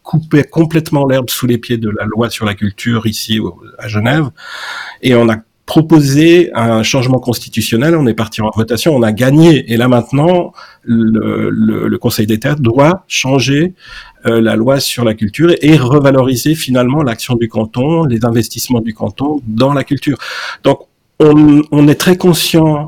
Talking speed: 175 wpm